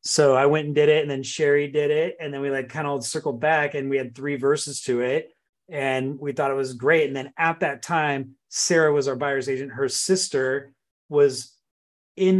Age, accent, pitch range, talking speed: 30-49, American, 135-170 Hz, 225 wpm